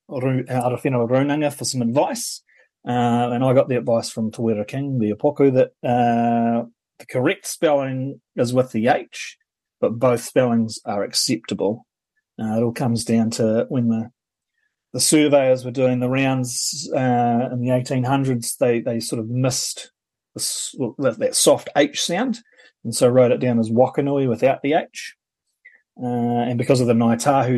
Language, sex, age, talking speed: English, male, 30-49, 160 wpm